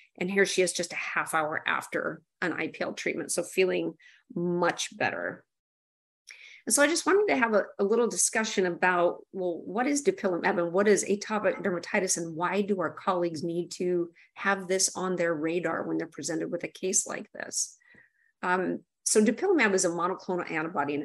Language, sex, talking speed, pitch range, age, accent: English, female, 185 wpm, 170-205 Hz, 40-59, American